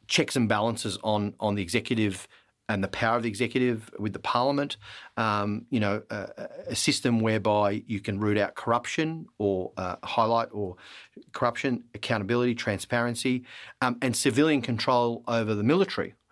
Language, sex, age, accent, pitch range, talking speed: English, male, 40-59, Australian, 105-125 Hz, 155 wpm